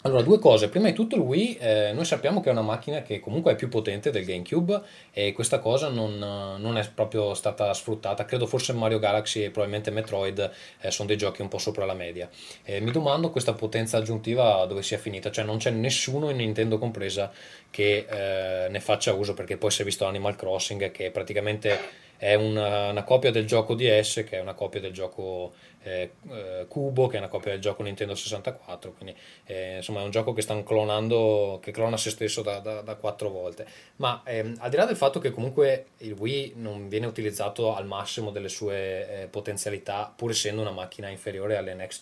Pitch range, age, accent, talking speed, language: 100-120 Hz, 20-39, native, 205 wpm, Italian